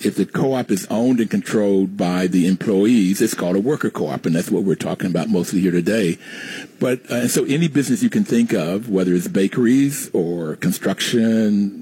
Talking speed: 195 wpm